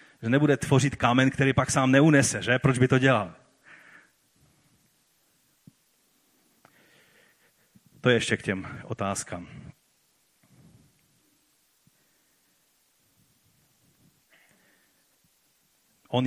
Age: 40-59